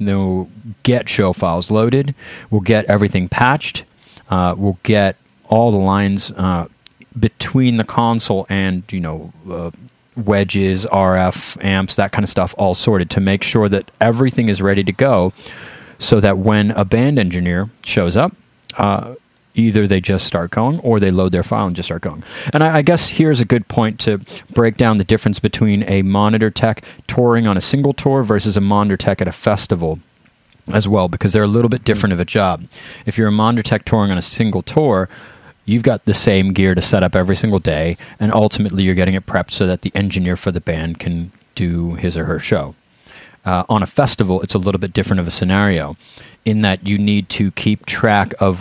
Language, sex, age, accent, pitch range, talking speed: English, male, 30-49, American, 95-110 Hz, 205 wpm